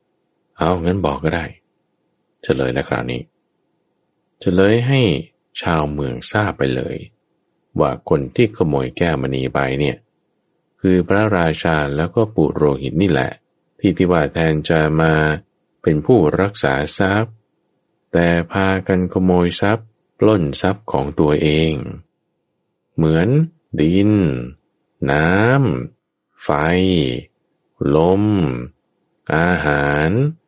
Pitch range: 75-105 Hz